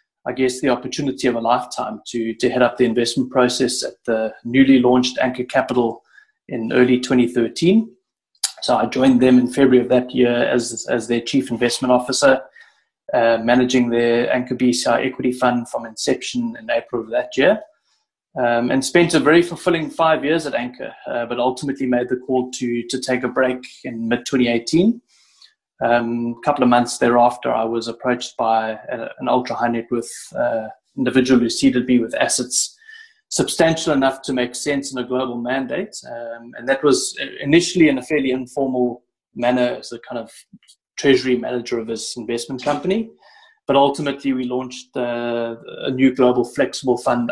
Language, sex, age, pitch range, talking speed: English, male, 20-39, 120-140 Hz, 170 wpm